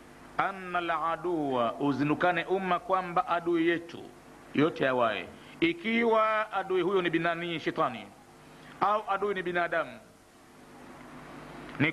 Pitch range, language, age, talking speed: 165-225 Hz, Swahili, 50-69, 100 wpm